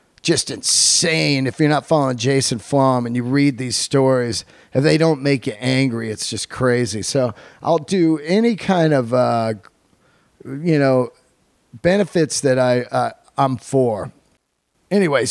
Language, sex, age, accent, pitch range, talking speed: English, male, 40-59, American, 135-200 Hz, 150 wpm